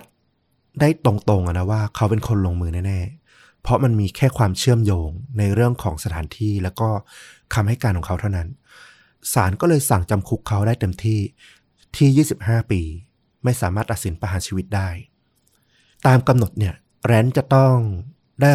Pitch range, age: 95-120 Hz, 20-39